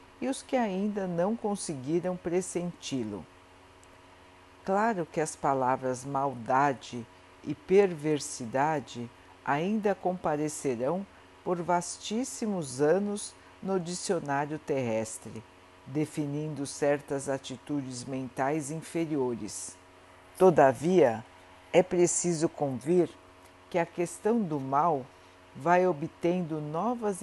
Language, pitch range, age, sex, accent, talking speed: Portuguese, 125-175 Hz, 60-79, female, Brazilian, 85 wpm